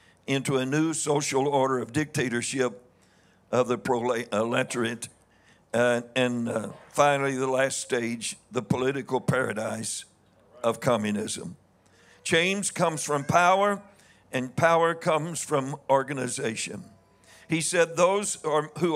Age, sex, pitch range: 60-79, male, 110-145 Hz